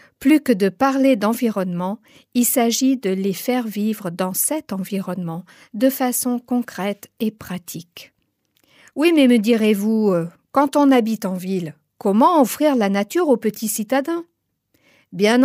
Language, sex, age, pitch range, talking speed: French, female, 50-69, 200-260 Hz, 140 wpm